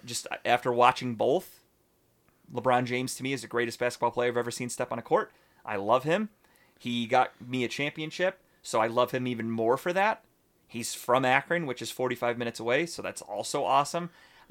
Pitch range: 120-145 Hz